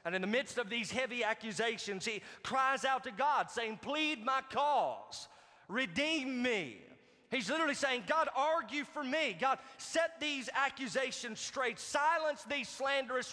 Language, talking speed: English, 155 wpm